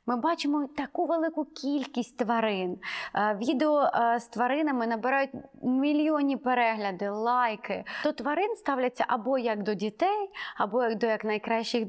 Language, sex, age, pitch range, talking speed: Ukrainian, female, 20-39, 205-280 Hz, 120 wpm